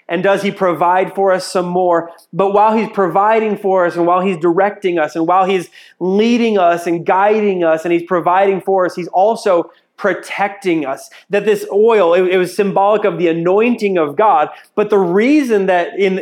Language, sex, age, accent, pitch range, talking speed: English, male, 30-49, American, 175-210 Hz, 195 wpm